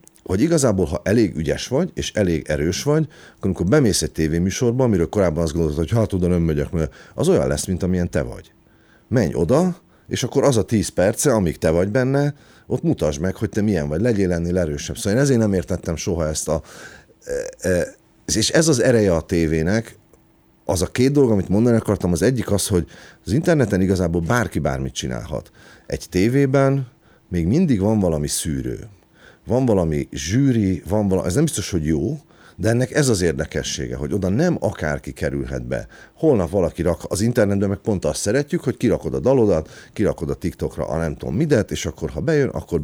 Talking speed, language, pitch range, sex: 195 wpm, Hungarian, 80-120 Hz, male